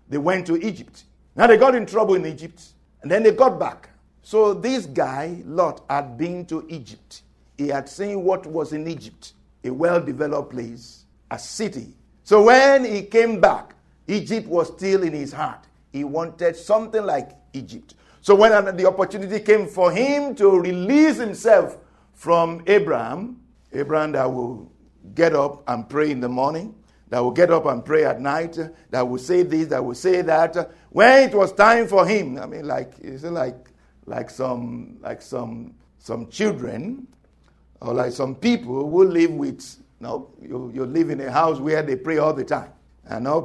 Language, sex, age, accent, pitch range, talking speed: English, male, 50-69, Nigerian, 140-210 Hz, 185 wpm